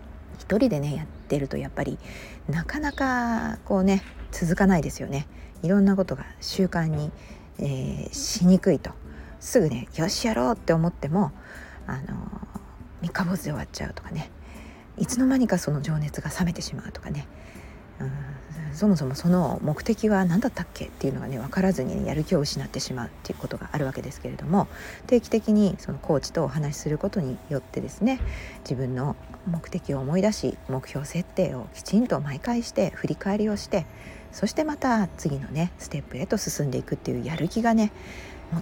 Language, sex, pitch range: Japanese, female, 140-205 Hz